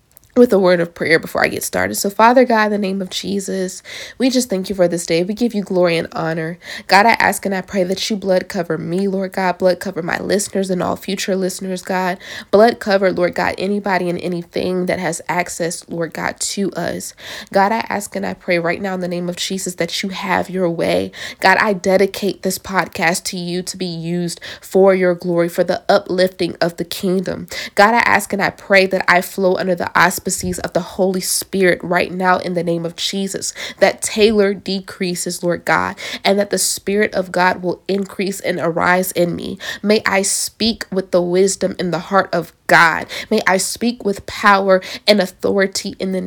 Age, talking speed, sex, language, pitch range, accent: 20-39, 215 wpm, female, English, 175-195 Hz, American